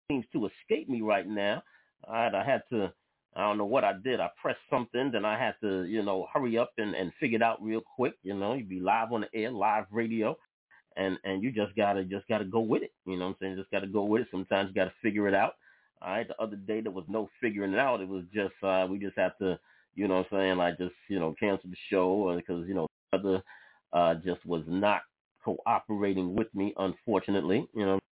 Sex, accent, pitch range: male, American, 95-110 Hz